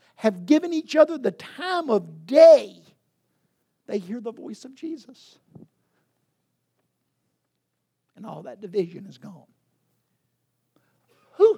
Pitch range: 145-220 Hz